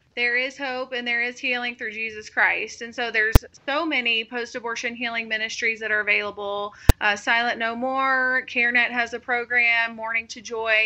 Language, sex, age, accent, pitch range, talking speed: English, female, 30-49, American, 225-250 Hz, 175 wpm